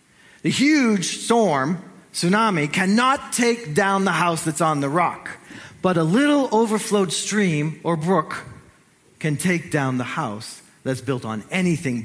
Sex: male